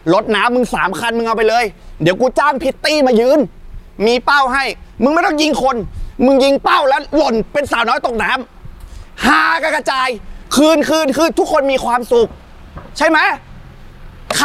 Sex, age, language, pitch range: male, 30-49, Thai, 240-300 Hz